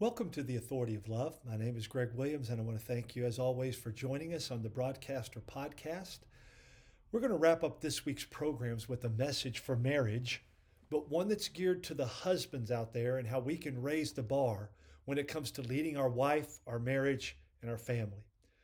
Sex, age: male, 50-69